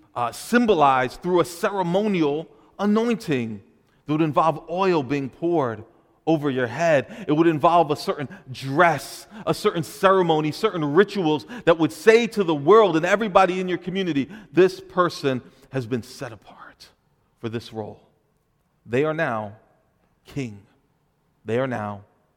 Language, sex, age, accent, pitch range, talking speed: English, male, 40-59, American, 135-195 Hz, 140 wpm